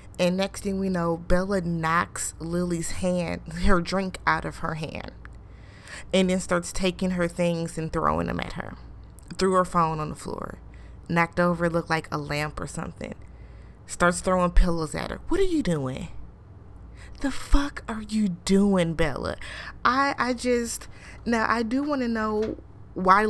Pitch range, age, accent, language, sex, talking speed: 165-195 Hz, 20-39, American, English, female, 165 wpm